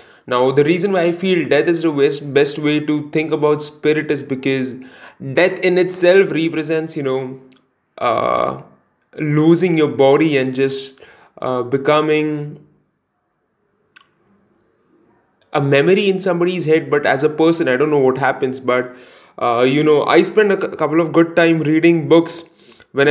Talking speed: 155 wpm